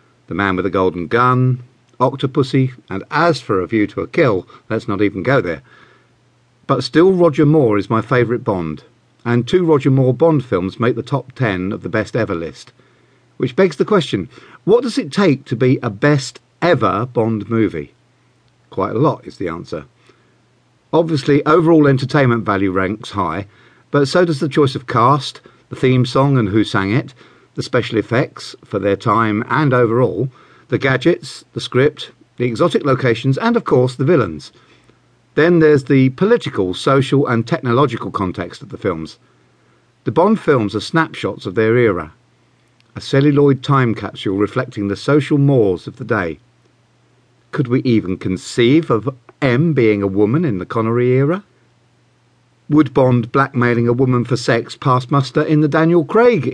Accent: British